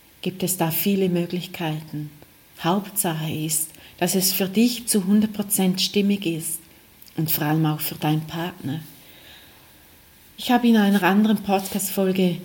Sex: female